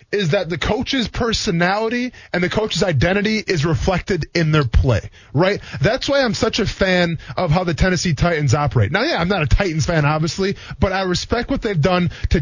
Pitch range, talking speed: 155-205 Hz, 205 wpm